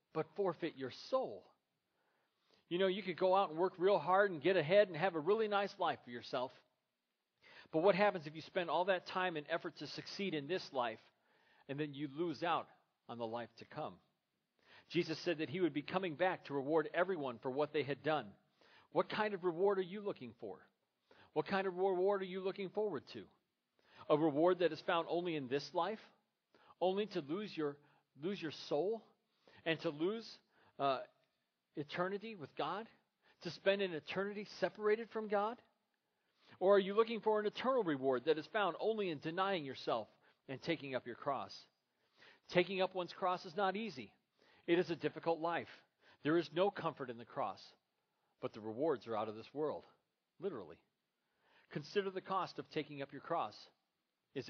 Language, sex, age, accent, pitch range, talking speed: English, male, 40-59, American, 150-195 Hz, 190 wpm